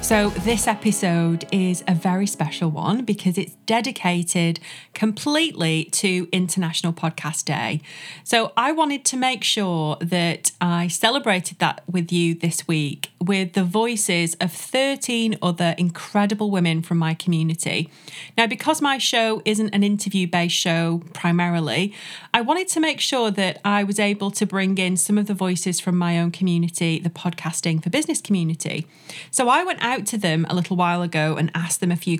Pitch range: 170-215 Hz